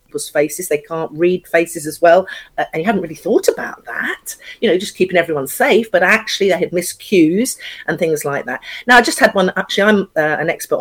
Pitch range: 150-215 Hz